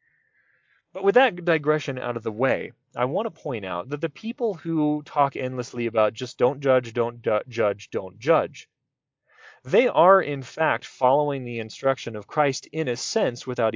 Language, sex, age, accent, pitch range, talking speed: English, male, 30-49, American, 115-155 Hz, 175 wpm